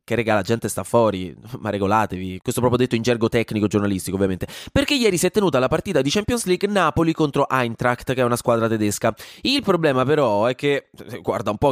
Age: 20-39